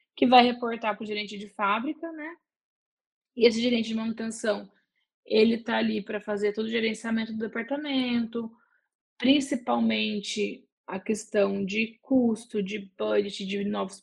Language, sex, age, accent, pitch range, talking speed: Portuguese, female, 10-29, Brazilian, 205-250 Hz, 140 wpm